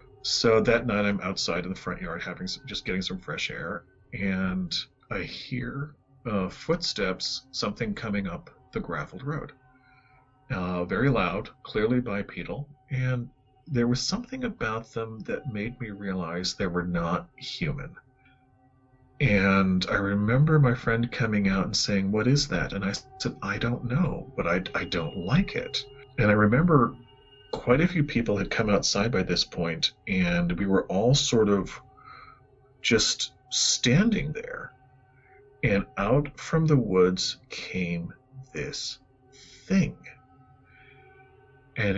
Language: English